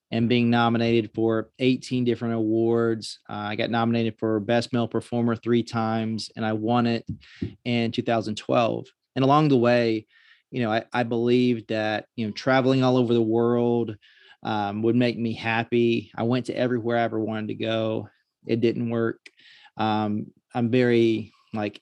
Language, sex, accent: English, male, American